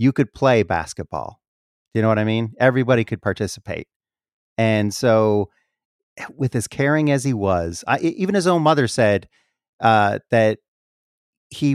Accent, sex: American, male